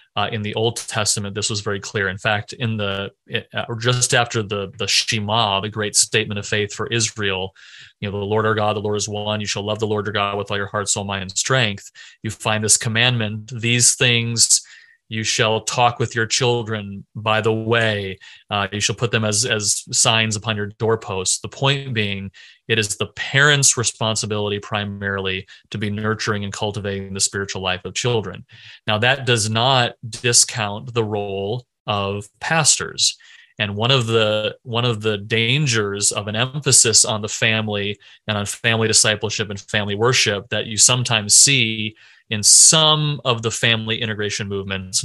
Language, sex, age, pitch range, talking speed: English, male, 30-49, 105-120 Hz, 185 wpm